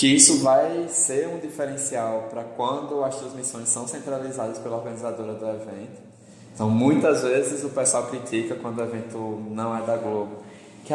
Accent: Brazilian